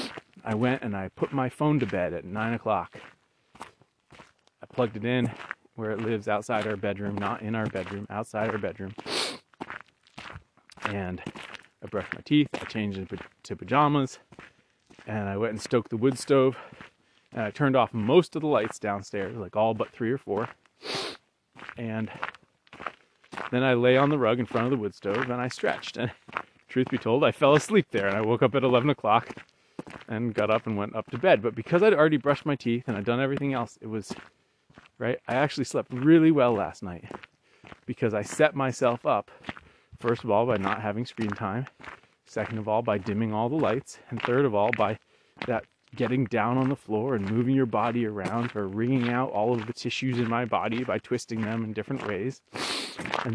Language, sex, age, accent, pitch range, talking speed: English, male, 30-49, American, 110-130 Hz, 200 wpm